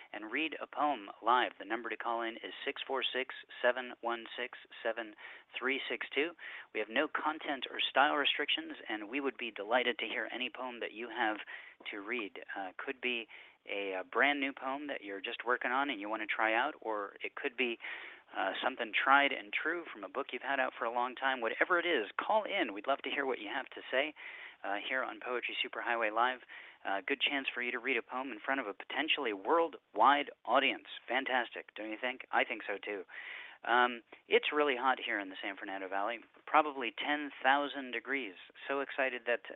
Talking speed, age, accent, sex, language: 200 wpm, 30-49, American, male, English